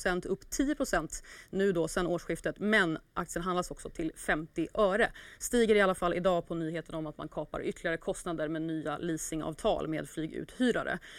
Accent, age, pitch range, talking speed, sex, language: native, 30-49, 170-220 Hz, 165 wpm, female, Swedish